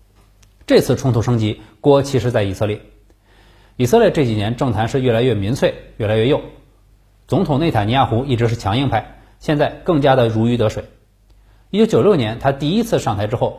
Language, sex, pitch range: Chinese, male, 105-140 Hz